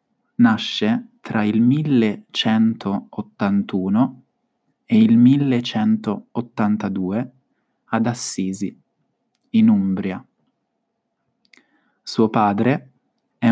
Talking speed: 60 wpm